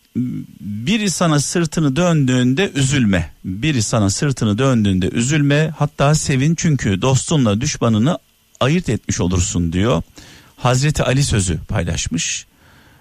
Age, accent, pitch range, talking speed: 50-69, native, 90-130 Hz, 105 wpm